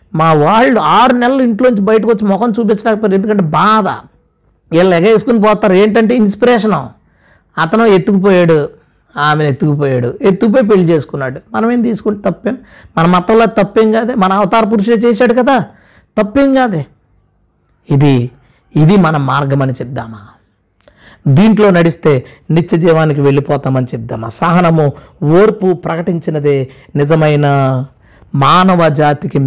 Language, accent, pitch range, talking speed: Telugu, native, 140-215 Hz, 115 wpm